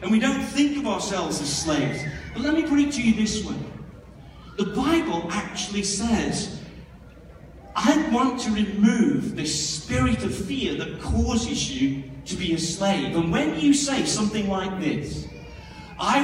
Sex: male